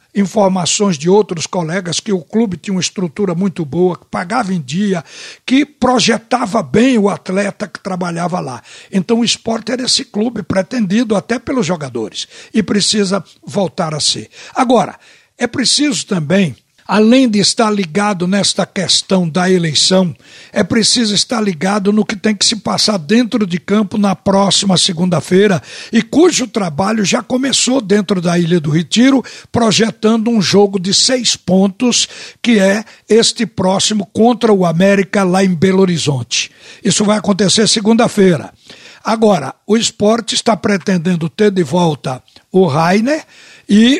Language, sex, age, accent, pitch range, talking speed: Portuguese, male, 60-79, Brazilian, 185-220 Hz, 150 wpm